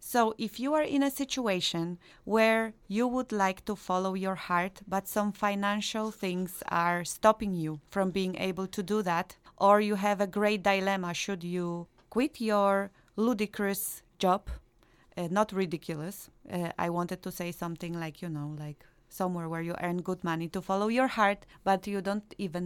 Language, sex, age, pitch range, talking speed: English, female, 30-49, 175-210 Hz, 175 wpm